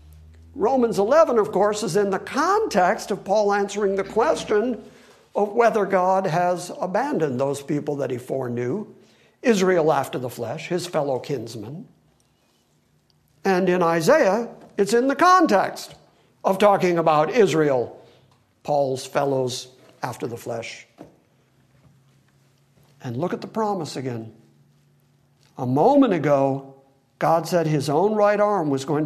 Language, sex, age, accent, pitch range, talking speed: English, male, 60-79, American, 140-200 Hz, 130 wpm